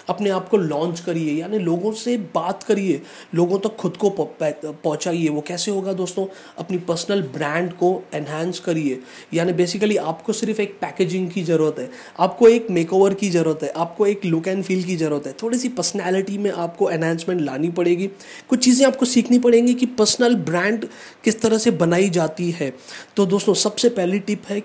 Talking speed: 185 wpm